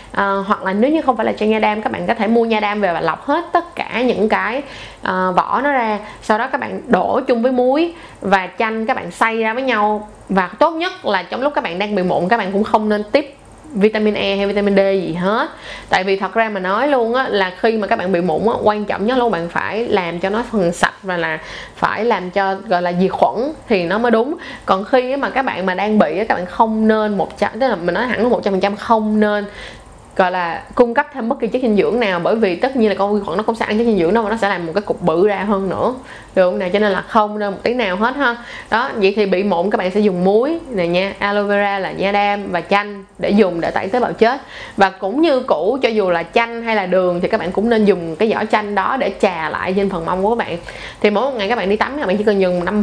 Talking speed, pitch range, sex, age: 290 wpm, 190-235 Hz, female, 20-39